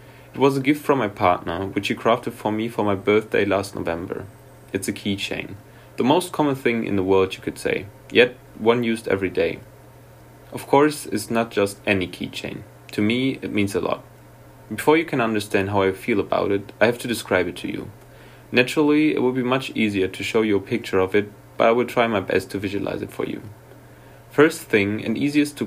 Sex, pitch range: male, 100-130 Hz